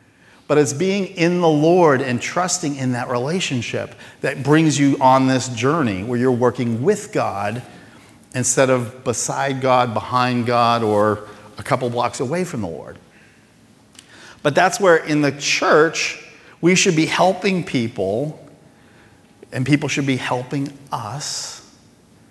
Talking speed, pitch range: 145 wpm, 125-165 Hz